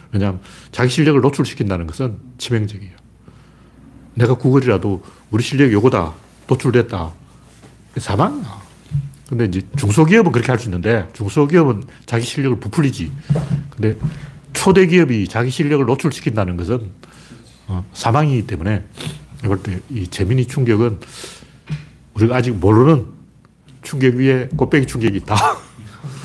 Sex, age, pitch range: male, 40-59, 105-145 Hz